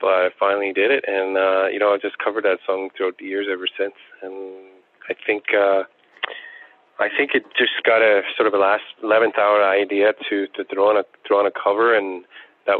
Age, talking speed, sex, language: 30-49, 215 wpm, male, English